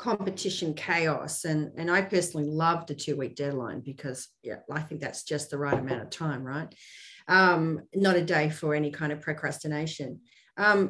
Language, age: English, 40-59